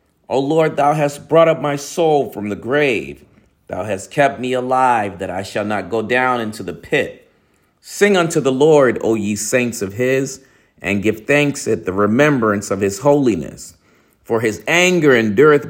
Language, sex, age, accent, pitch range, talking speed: English, male, 40-59, American, 105-145 Hz, 180 wpm